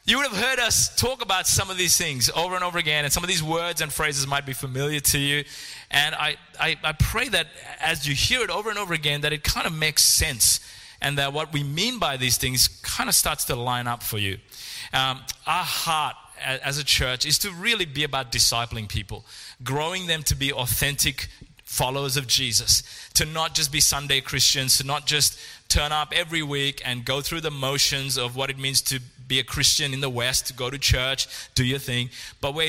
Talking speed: 225 wpm